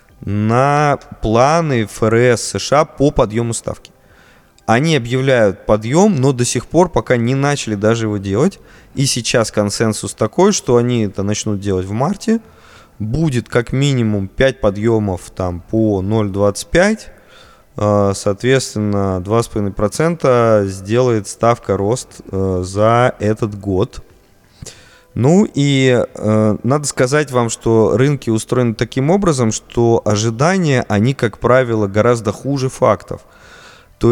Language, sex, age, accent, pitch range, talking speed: Russian, male, 20-39, native, 105-135 Hz, 115 wpm